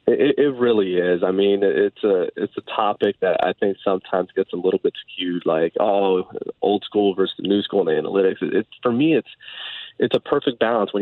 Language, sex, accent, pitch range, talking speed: English, male, American, 100-125 Hz, 210 wpm